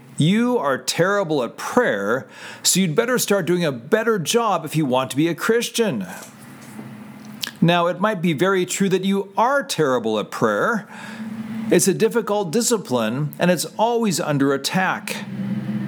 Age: 40-59